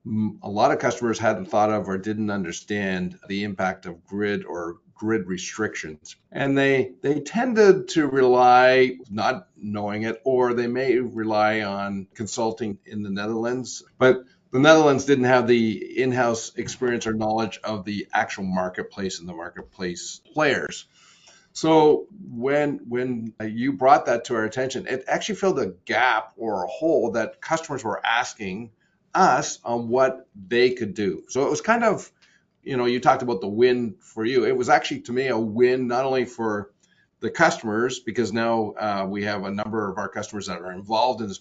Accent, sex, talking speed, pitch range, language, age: American, male, 175 wpm, 105-130 Hz, English, 50-69